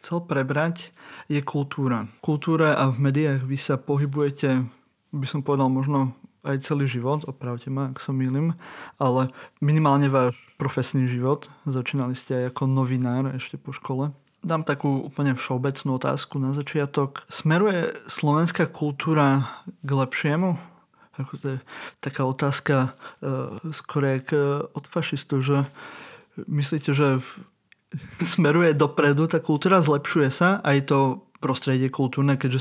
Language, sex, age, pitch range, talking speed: Slovak, male, 30-49, 135-150 Hz, 135 wpm